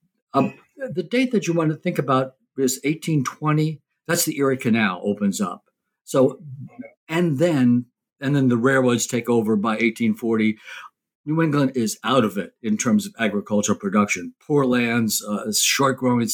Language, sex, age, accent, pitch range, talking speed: English, male, 60-79, American, 115-150 Hz, 160 wpm